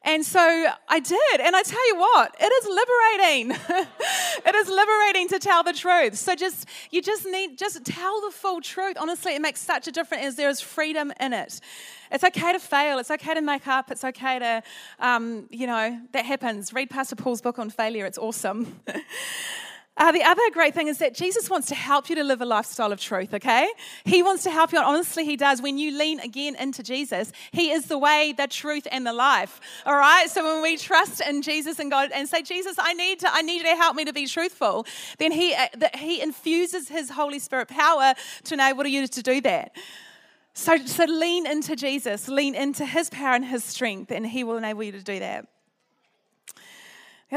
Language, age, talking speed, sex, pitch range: English, 30-49, 215 wpm, female, 235-335 Hz